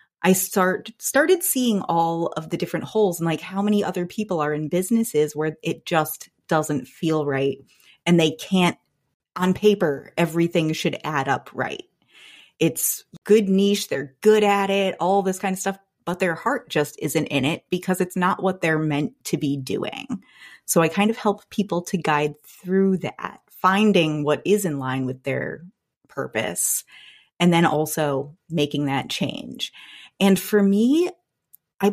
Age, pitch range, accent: 30-49, 155-205 Hz, American